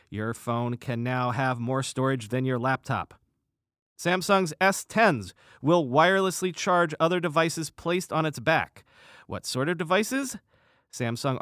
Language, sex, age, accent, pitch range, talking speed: English, male, 40-59, American, 125-170 Hz, 135 wpm